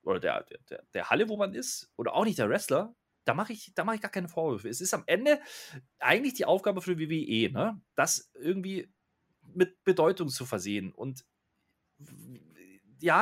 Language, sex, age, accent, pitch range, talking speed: German, male, 30-49, German, 145-195 Hz, 180 wpm